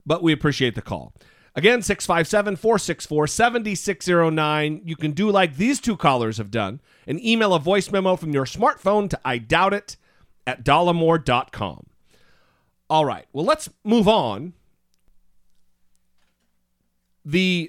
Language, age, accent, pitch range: English, 40-59, American, 120-195 Hz